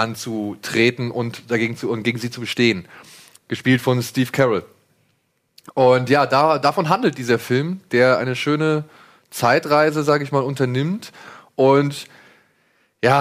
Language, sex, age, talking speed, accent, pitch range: German, male, 30-49, 135 wpm, German, 120-150 Hz